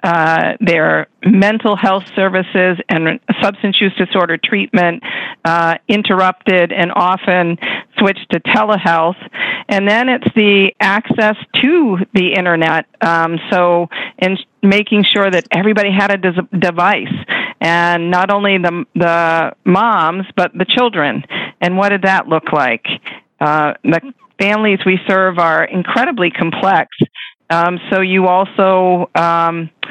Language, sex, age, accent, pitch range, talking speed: English, female, 50-69, American, 175-200 Hz, 130 wpm